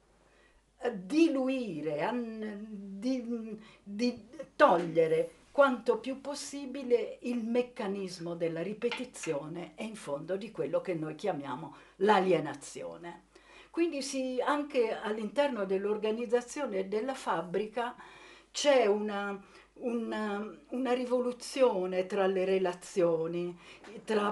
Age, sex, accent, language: 50-69, female, native, Italian